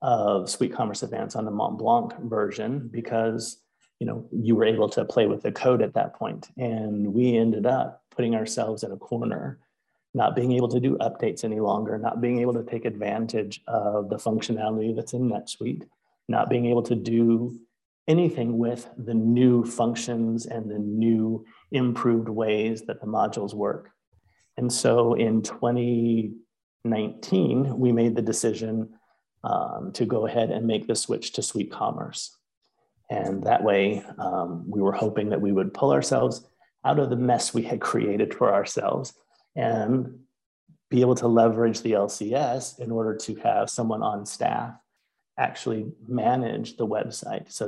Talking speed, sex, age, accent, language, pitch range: 165 wpm, male, 30-49, American, English, 110-120 Hz